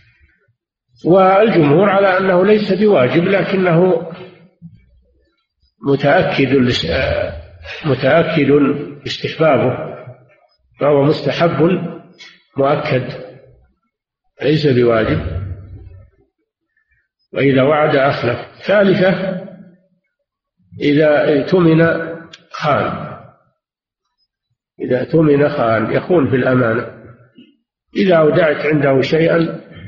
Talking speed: 60 wpm